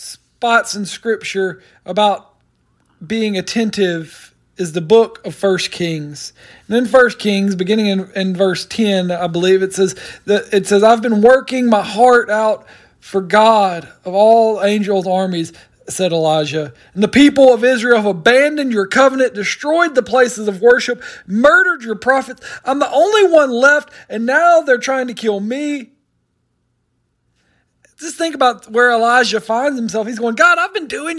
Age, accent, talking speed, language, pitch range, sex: 40-59, American, 160 wpm, English, 205-275 Hz, male